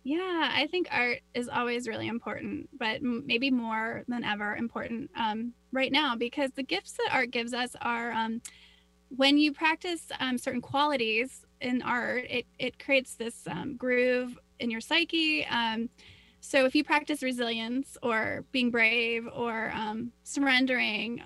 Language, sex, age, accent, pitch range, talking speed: English, female, 10-29, American, 235-280 Hz, 155 wpm